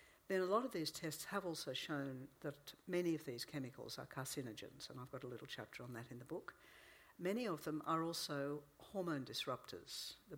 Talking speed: 200 wpm